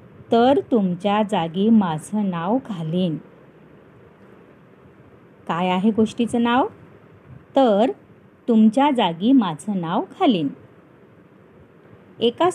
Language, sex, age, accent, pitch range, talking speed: Marathi, female, 30-49, native, 185-245 Hz, 80 wpm